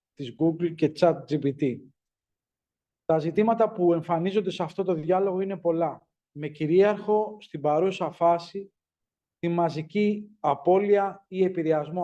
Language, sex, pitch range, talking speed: Greek, male, 150-185 Hz, 120 wpm